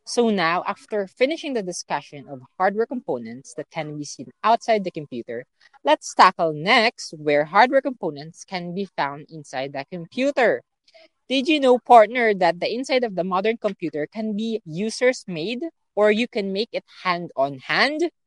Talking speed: 160 wpm